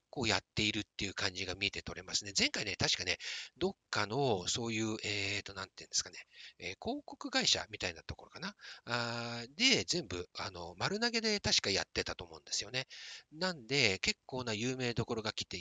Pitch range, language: 100-150 Hz, Japanese